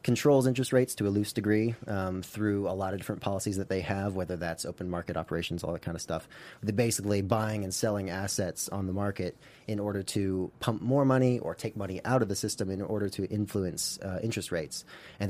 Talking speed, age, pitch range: 225 wpm, 30-49, 95-110 Hz